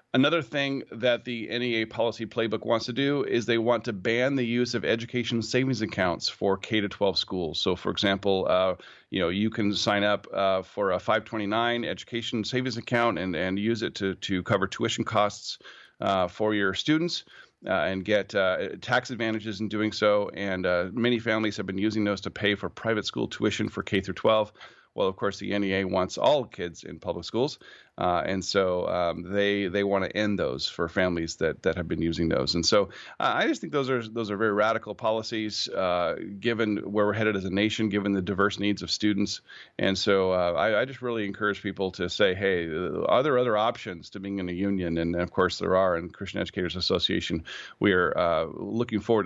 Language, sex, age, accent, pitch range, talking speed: English, male, 40-59, American, 95-115 Hz, 215 wpm